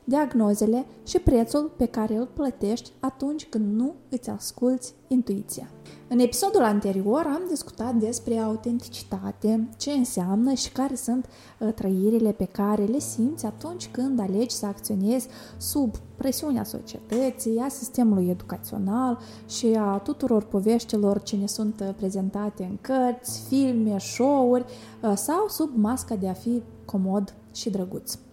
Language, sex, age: Romanian, female, 20-39